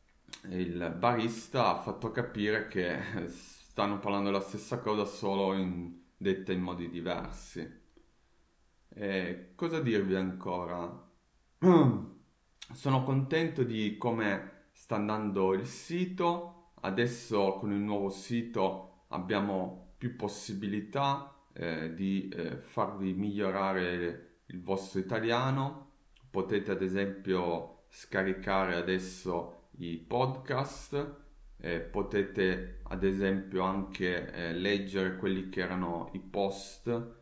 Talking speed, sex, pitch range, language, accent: 100 wpm, male, 95-125 Hz, Italian, native